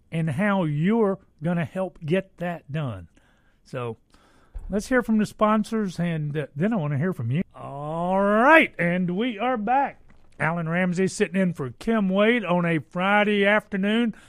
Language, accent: Japanese, American